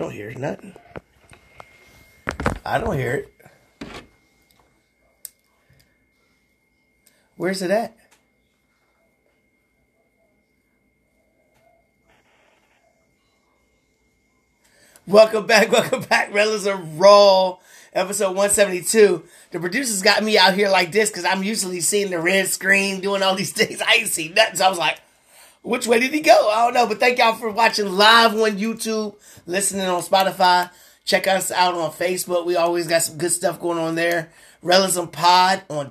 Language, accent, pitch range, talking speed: English, American, 175-215 Hz, 140 wpm